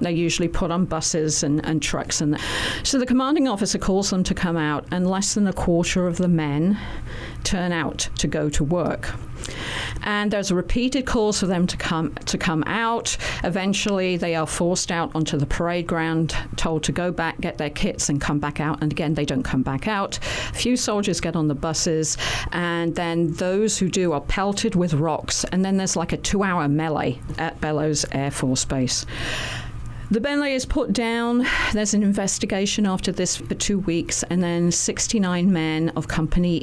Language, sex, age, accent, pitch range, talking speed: English, female, 50-69, British, 155-195 Hz, 195 wpm